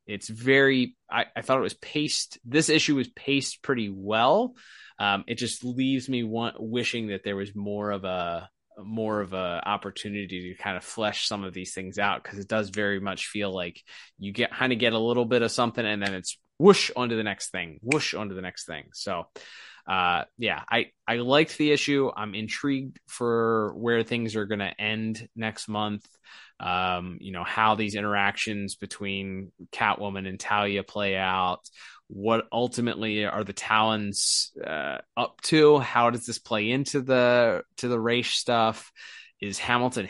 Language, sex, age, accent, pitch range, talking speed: English, male, 20-39, American, 100-120 Hz, 180 wpm